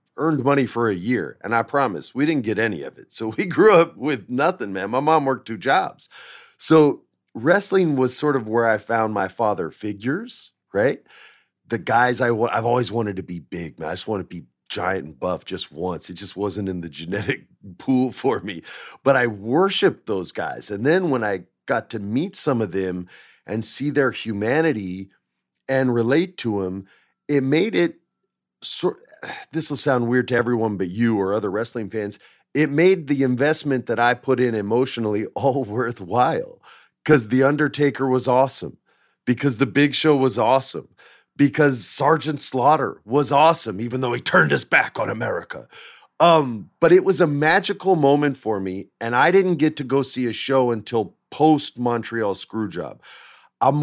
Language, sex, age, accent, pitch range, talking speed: English, male, 40-59, American, 110-145 Hz, 180 wpm